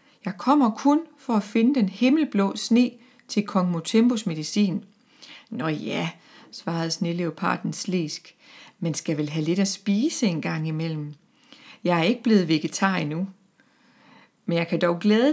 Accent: native